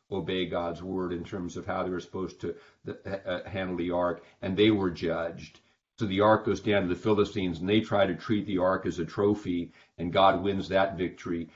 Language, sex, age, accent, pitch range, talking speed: English, male, 50-69, American, 90-105 Hz, 225 wpm